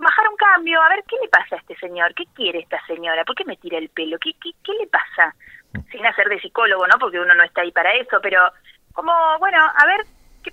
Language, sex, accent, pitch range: Spanish, female, Argentinian, 175-240 Hz